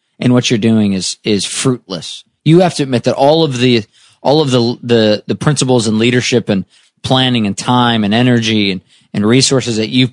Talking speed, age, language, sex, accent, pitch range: 200 wpm, 20-39, English, male, American, 105-140 Hz